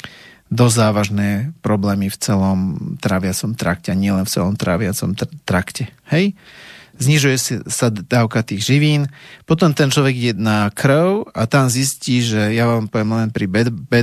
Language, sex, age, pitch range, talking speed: Slovak, male, 30-49, 110-130 Hz, 150 wpm